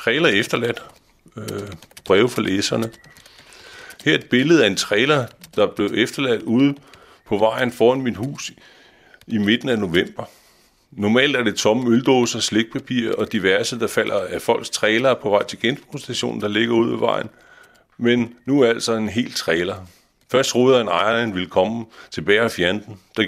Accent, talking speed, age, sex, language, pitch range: native, 175 wpm, 30-49, male, Danish, 110-135 Hz